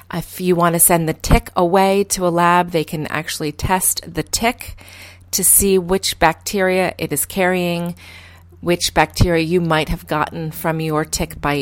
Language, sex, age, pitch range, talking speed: English, female, 30-49, 155-190 Hz, 175 wpm